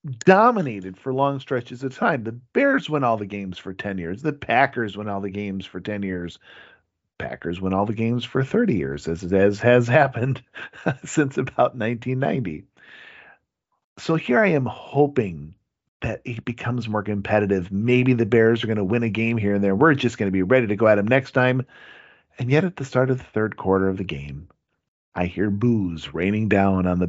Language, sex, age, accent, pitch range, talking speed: English, male, 40-59, American, 100-140 Hz, 205 wpm